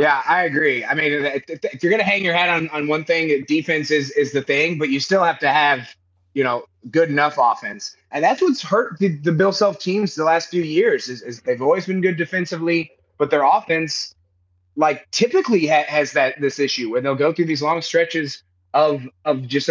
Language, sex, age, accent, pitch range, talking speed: English, male, 30-49, American, 135-160 Hz, 220 wpm